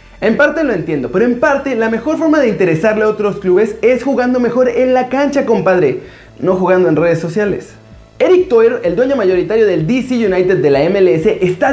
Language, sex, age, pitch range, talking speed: Spanish, male, 30-49, 215-265 Hz, 200 wpm